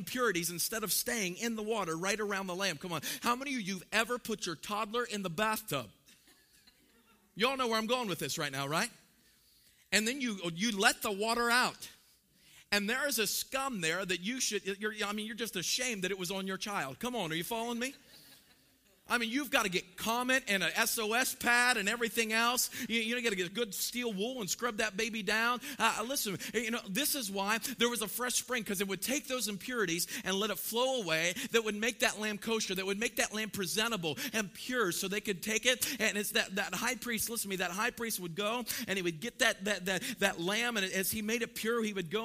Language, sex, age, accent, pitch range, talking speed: English, male, 40-59, American, 195-235 Hz, 245 wpm